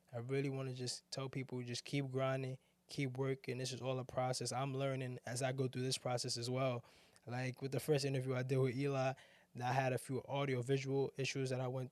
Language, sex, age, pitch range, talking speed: English, male, 20-39, 120-135 Hz, 225 wpm